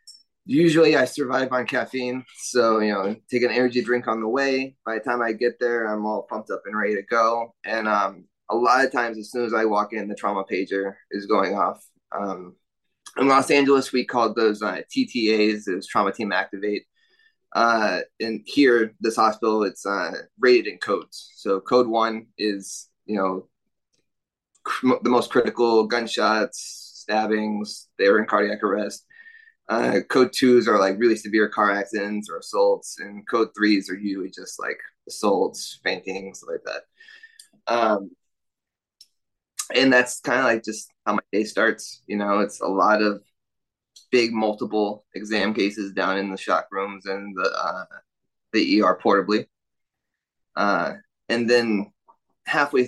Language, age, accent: English, 20-39, American